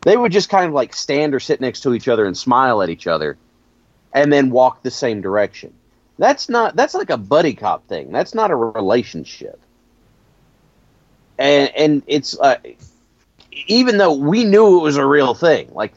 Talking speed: 195 wpm